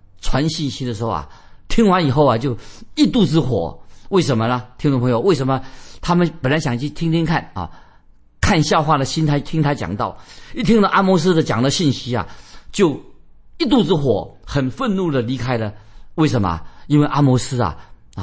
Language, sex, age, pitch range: Chinese, male, 50-69, 115-155 Hz